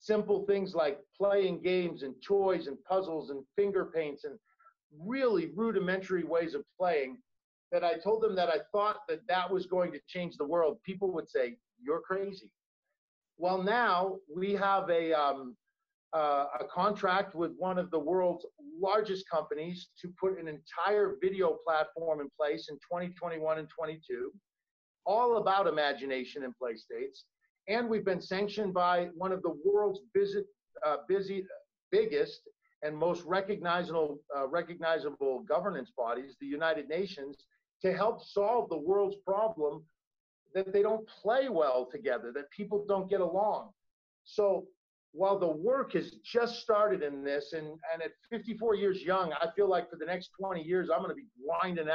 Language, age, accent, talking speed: English, 50-69, American, 160 wpm